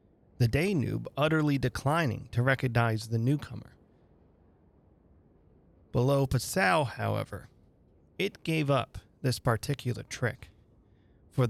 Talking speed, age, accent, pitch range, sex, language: 95 wpm, 30-49, American, 110-140 Hz, male, English